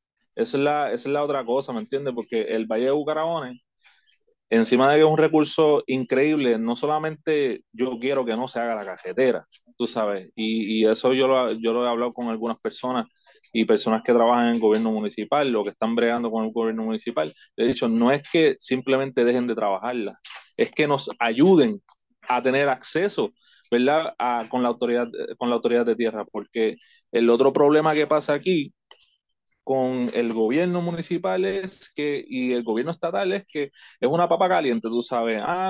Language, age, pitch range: Spanish, 20-39, 115-155 Hz